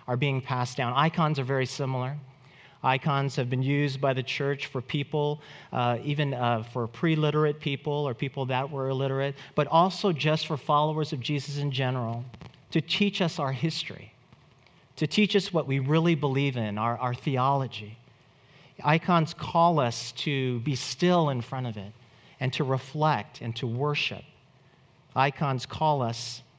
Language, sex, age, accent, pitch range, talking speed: English, male, 40-59, American, 125-155 Hz, 160 wpm